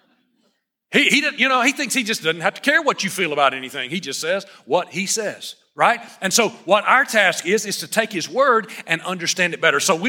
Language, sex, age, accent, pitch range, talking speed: English, male, 40-59, American, 155-230 Hz, 250 wpm